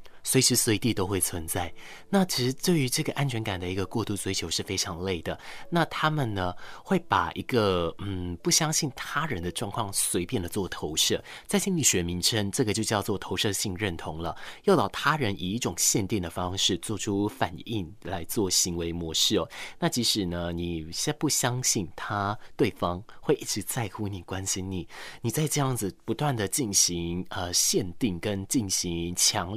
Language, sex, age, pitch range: Chinese, male, 30-49, 90-130 Hz